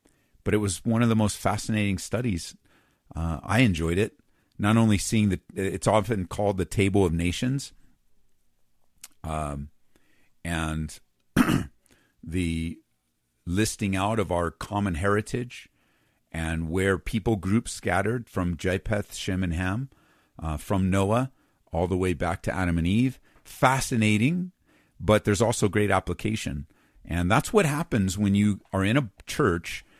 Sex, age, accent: male, 50-69, American